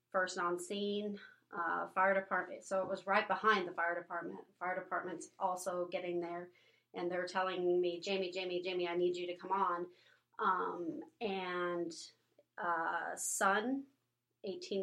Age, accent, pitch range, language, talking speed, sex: 30-49, American, 175-195 Hz, English, 150 wpm, female